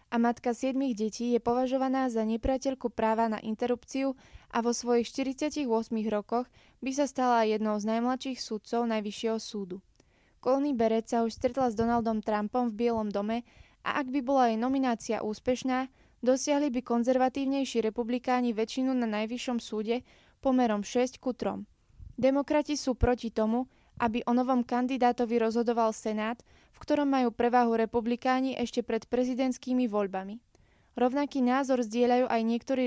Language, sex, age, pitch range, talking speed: Slovak, female, 20-39, 225-260 Hz, 145 wpm